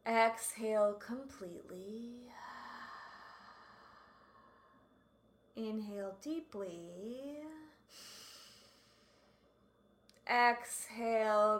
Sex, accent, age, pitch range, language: female, American, 20-39, 210-255 Hz, English